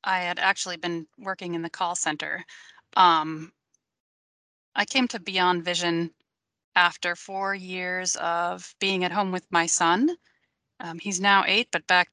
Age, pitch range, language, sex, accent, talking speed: 30-49, 170-210 Hz, English, female, American, 155 wpm